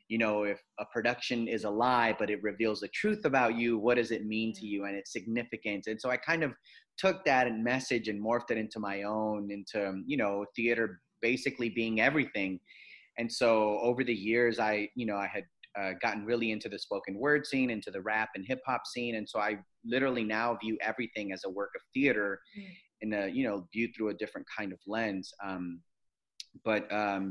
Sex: male